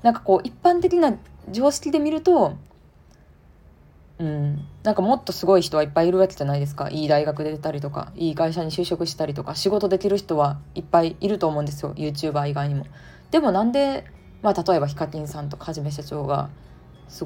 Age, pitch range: 20-39, 145-195 Hz